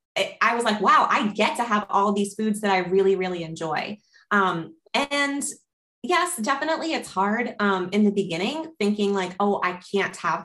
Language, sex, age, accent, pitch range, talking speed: English, female, 20-39, American, 190-235 Hz, 185 wpm